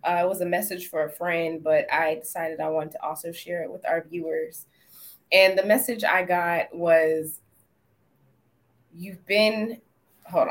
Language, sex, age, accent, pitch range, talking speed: English, female, 20-39, American, 170-210 Hz, 165 wpm